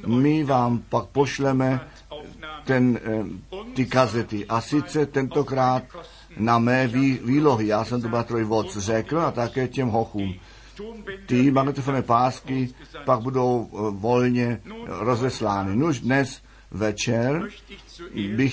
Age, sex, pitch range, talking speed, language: 50-69, male, 120-140 Hz, 105 wpm, Czech